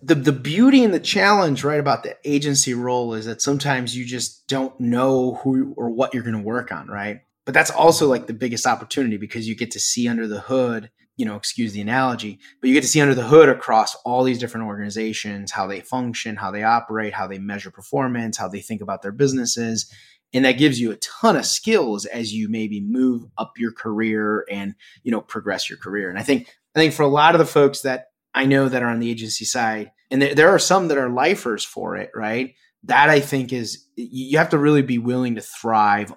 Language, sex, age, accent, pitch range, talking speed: English, male, 30-49, American, 110-140 Hz, 230 wpm